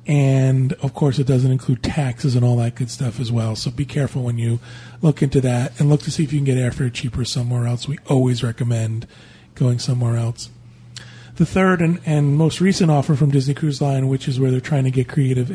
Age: 40-59